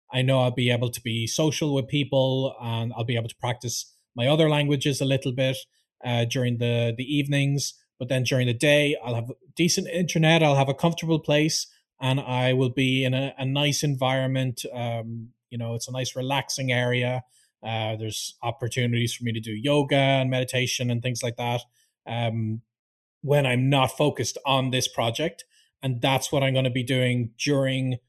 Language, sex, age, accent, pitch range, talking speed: English, male, 20-39, Irish, 125-145 Hz, 190 wpm